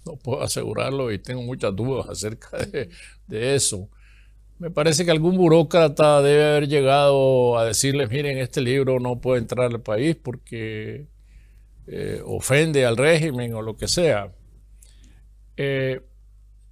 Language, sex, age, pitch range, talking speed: English, male, 60-79, 100-135 Hz, 140 wpm